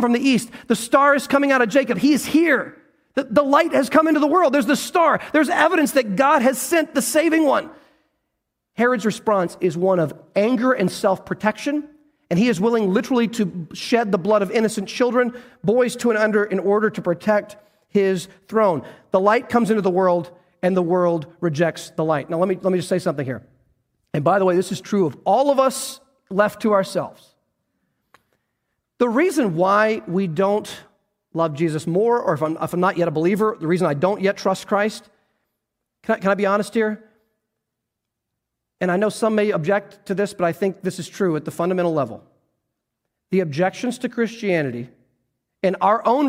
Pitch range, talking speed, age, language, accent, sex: 175-245 Hz, 200 wpm, 40-59, English, American, male